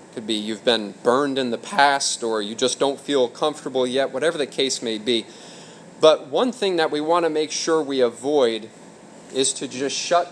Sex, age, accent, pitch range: male, 30-49, American, 125-160 Hz